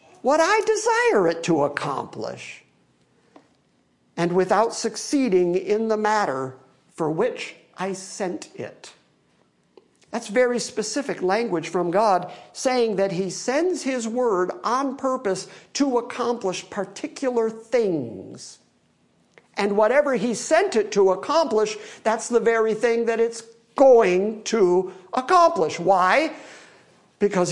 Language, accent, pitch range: English, American, 190-260 Hz